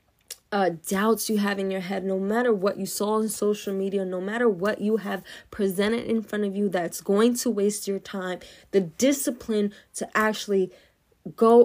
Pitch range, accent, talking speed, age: 185-220 Hz, American, 185 wpm, 20-39